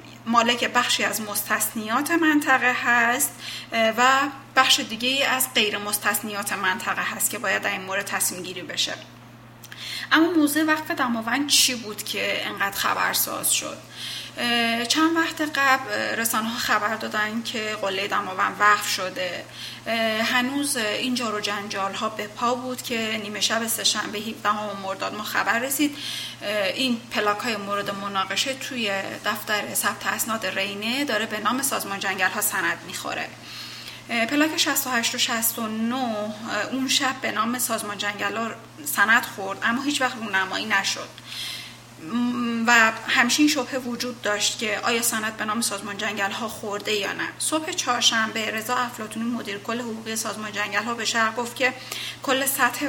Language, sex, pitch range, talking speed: Persian, female, 210-250 Hz, 145 wpm